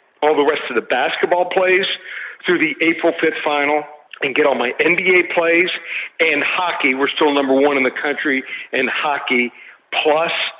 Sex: male